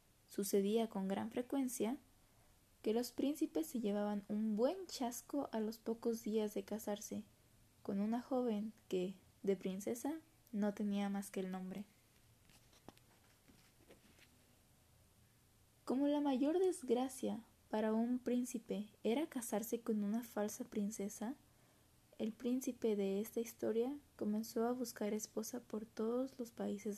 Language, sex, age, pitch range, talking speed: Spanish, female, 20-39, 185-230 Hz, 125 wpm